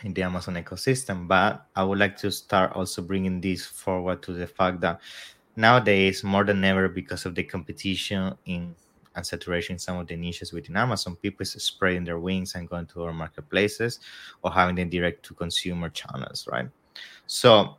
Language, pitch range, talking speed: English, 90-100 Hz, 180 wpm